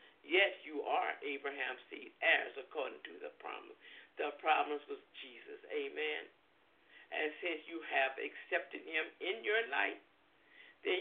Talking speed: 135 wpm